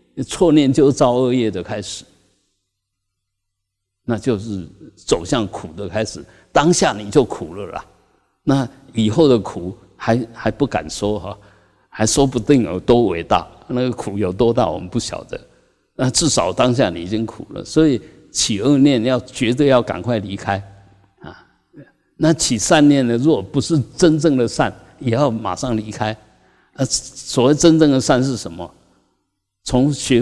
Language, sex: Chinese, male